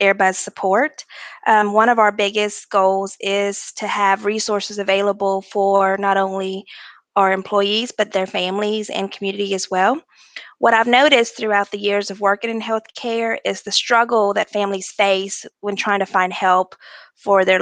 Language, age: English, 20-39